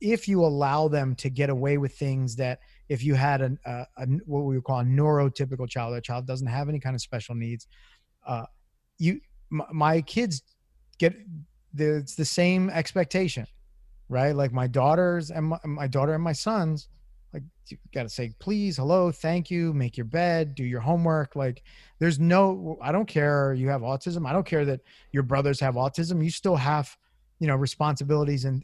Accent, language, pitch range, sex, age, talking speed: American, English, 135-160 Hz, male, 30-49, 185 wpm